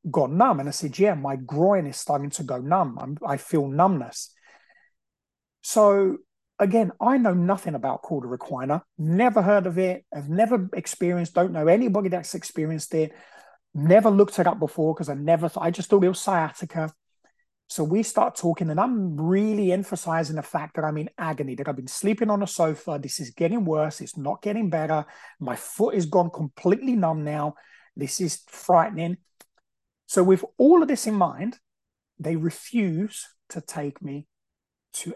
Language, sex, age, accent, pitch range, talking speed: English, male, 30-49, British, 145-195 Hz, 180 wpm